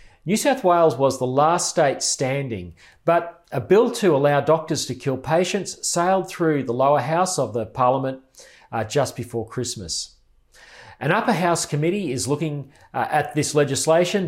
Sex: male